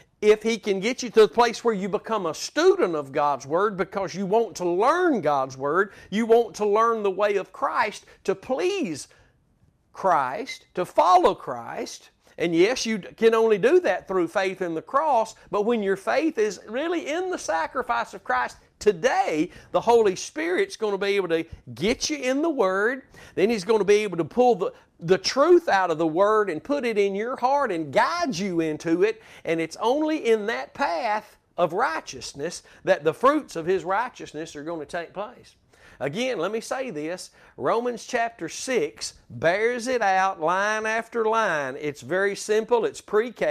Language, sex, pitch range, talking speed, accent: English, male, 175-240 Hz, 190 wpm, American